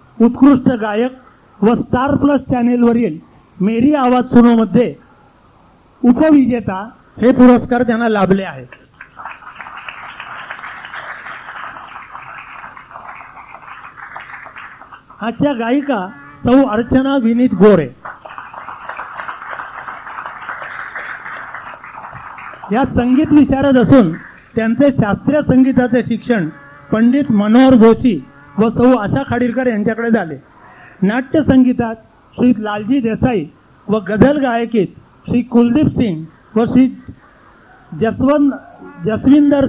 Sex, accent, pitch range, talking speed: male, native, 215-255 Hz, 80 wpm